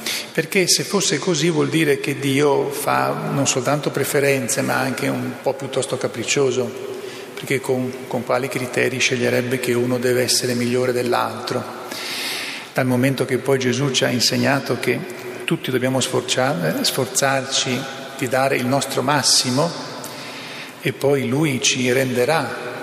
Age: 40-59